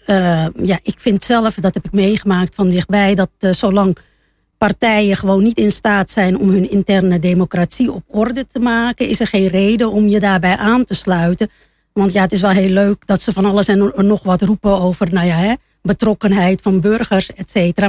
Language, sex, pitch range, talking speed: Dutch, female, 190-230 Hz, 210 wpm